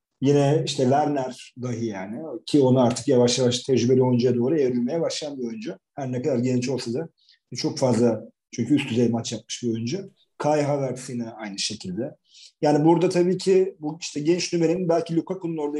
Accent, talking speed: native, 180 wpm